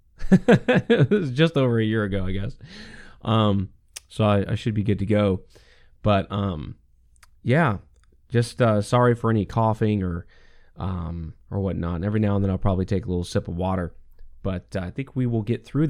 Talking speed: 195 wpm